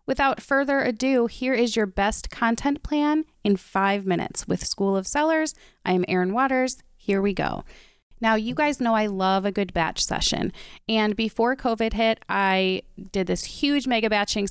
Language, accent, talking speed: English, American, 175 wpm